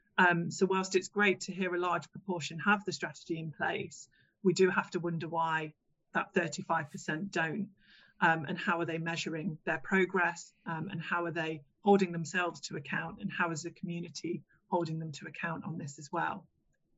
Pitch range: 170-195 Hz